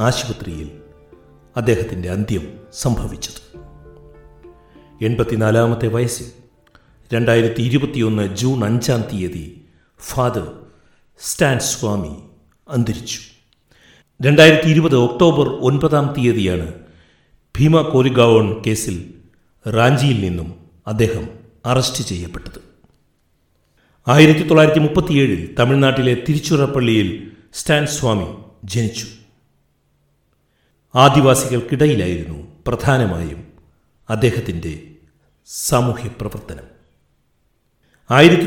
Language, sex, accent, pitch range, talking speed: Malayalam, male, native, 90-130 Hz, 65 wpm